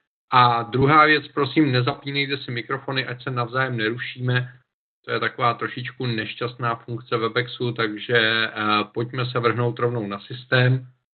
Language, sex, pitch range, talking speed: Czech, male, 115-135 Hz, 135 wpm